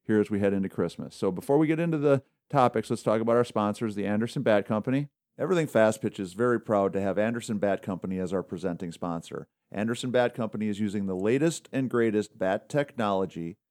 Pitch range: 105-125 Hz